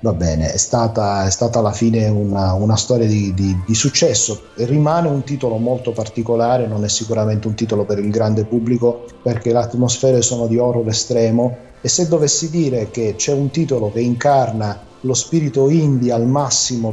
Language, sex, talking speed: Italian, male, 180 wpm